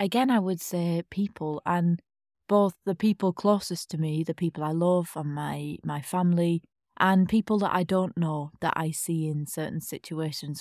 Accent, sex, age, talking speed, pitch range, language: British, female, 20-39, 180 wpm, 155-180 Hz, English